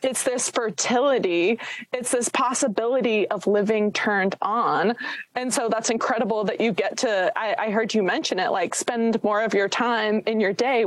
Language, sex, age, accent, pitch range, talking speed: English, female, 20-39, American, 215-275 Hz, 180 wpm